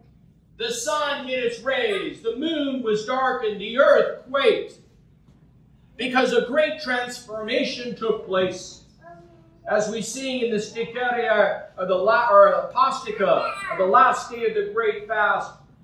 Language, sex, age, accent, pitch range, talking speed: English, male, 50-69, American, 165-240 Hz, 135 wpm